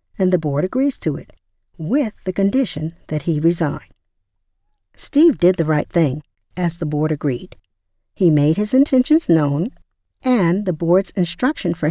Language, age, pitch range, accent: English, 50-69, 155-230 Hz, American